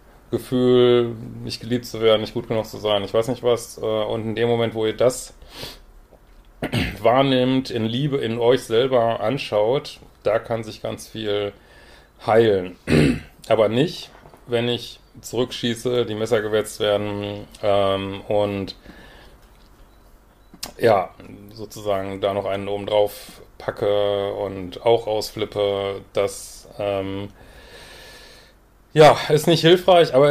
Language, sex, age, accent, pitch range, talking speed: German, male, 30-49, German, 105-125 Hz, 120 wpm